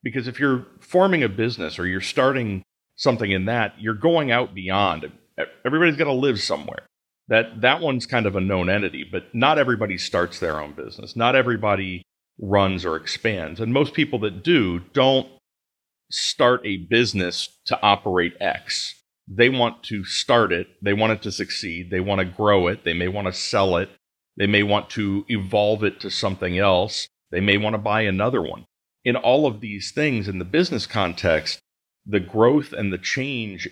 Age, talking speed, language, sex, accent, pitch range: 40-59, 185 wpm, English, male, American, 90-115 Hz